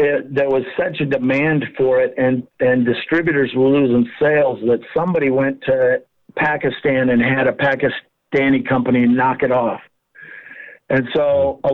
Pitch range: 125-140 Hz